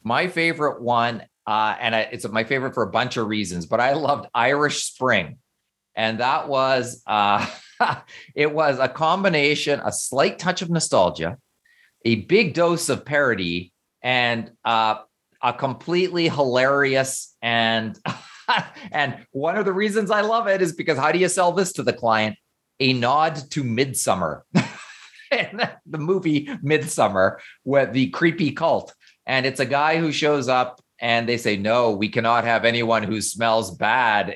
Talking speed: 155 wpm